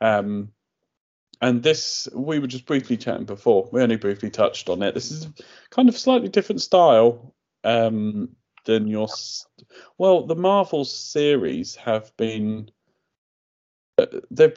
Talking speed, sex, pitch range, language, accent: 130 wpm, male, 100-165 Hz, English, British